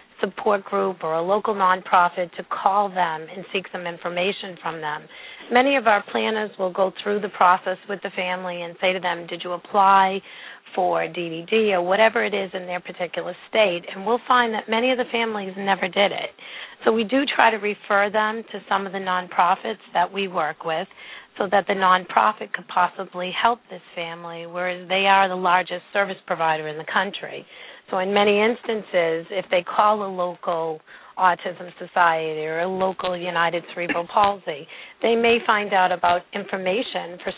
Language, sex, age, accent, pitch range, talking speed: English, female, 40-59, American, 175-205 Hz, 185 wpm